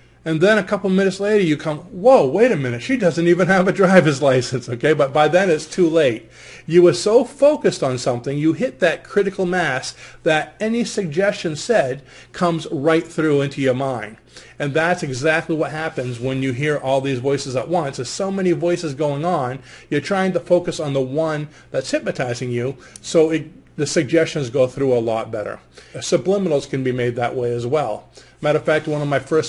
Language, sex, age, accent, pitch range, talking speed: English, male, 40-59, American, 130-160 Hz, 205 wpm